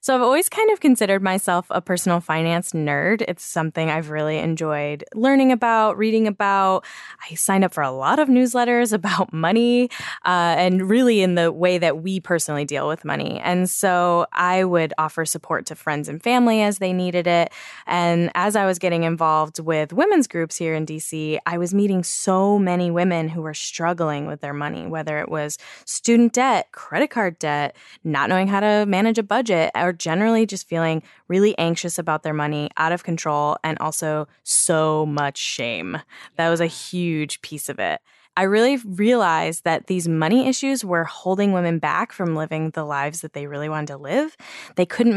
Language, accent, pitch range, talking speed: English, American, 155-200 Hz, 190 wpm